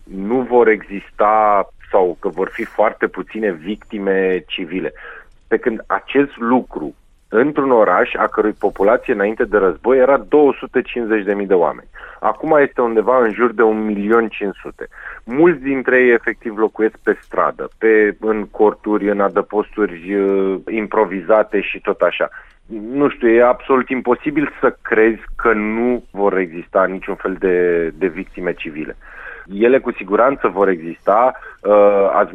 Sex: male